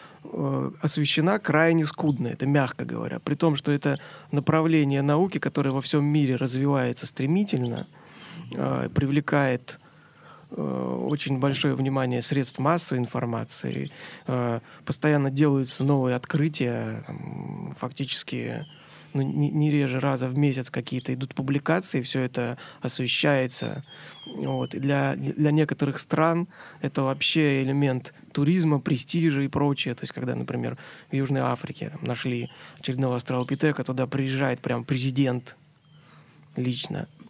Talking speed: 120 wpm